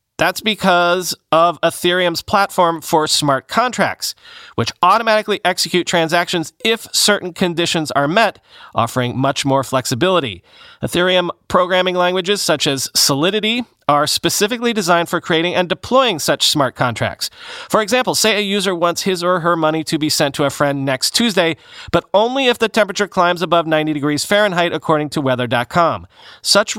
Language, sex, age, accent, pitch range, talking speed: English, male, 40-59, American, 140-185 Hz, 155 wpm